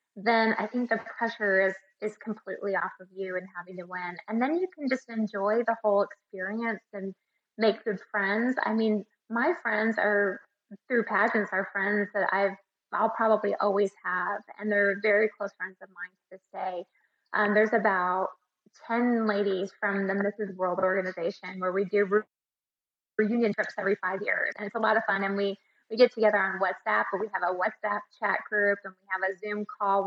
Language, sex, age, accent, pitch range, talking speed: English, female, 20-39, American, 190-215 Hz, 200 wpm